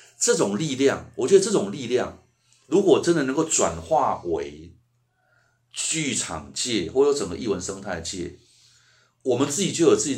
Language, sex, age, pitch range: Chinese, male, 30-49, 100-135 Hz